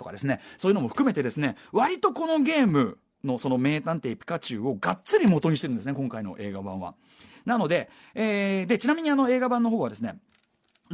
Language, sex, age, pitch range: Japanese, male, 40-59, 155-245 Hz